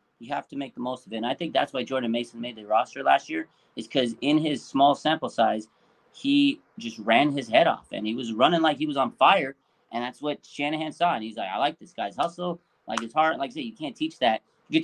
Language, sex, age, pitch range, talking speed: English, male, 30-49, 120-195 Hz, 270 wpm